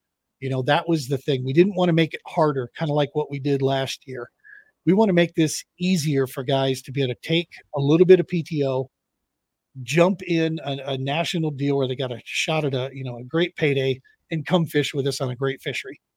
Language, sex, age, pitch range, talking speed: English, male, 40-59, 135-165 Hz, 245 wpm